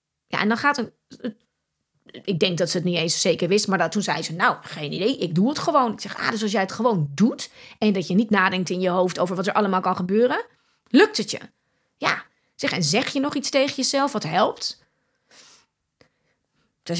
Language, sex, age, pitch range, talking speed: Dutch, female, 30-49, 180-250 Hz, 225 wpm